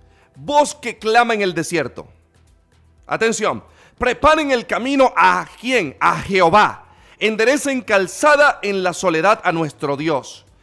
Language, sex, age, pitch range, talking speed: Spanish, male, 40-59, 185-240 Hz, 125 wpm